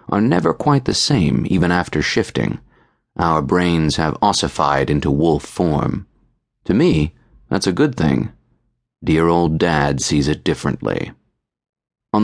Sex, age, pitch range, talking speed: male, 30-49, 80-100 Hz, 135 wpm